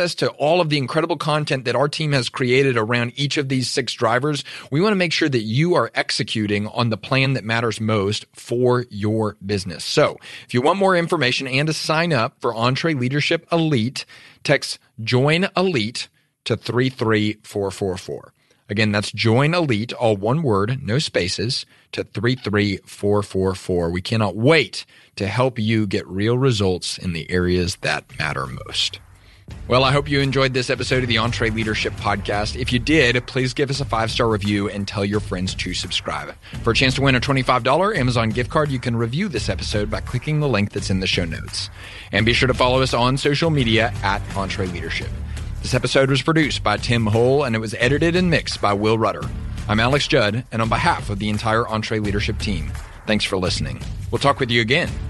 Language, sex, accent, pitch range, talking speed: English, male, American, 105-135 Hz, 195 wpm